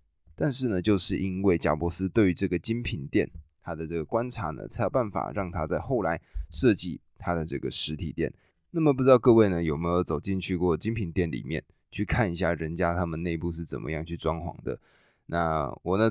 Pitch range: 85-105 Hz